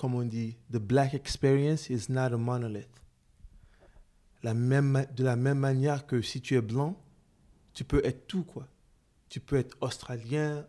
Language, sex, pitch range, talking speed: French, male, 115-135 Hz, 170 wpm